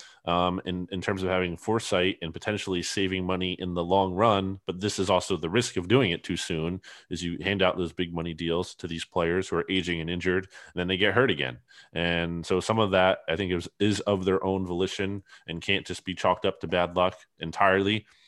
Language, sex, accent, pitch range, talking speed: English, male, American, 90-100 Hz, 235 wpm